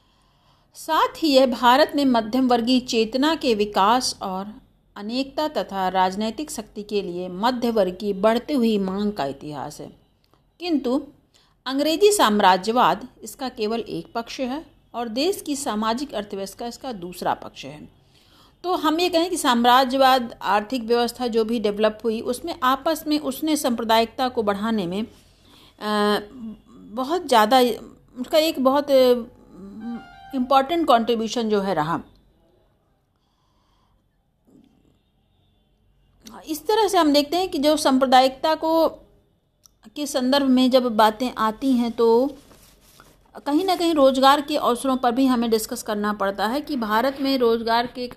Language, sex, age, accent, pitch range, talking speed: Hindi, female, 50-69, native, 210-270 Hz, 135 wpm